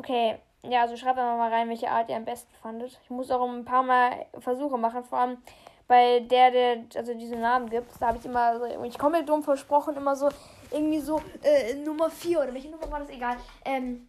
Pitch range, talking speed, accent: 240-305 Hz, 240 wpm, German